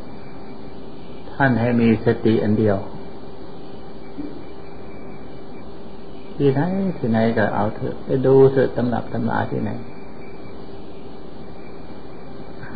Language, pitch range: Thai, 110-125 Hz